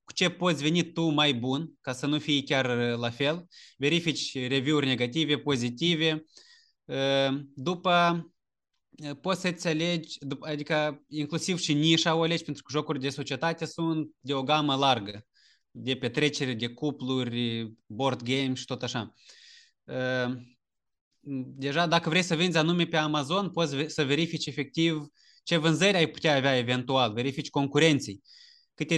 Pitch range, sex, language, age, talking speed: 135-170 Hz, male, Romanian, 20-39, 140 wpm